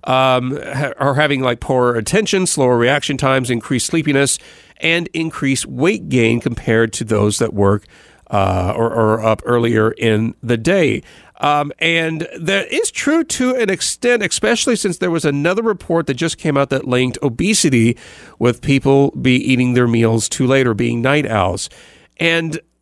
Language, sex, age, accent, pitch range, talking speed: English, male, 40-59, American, 125-165 Hz, 165 wpm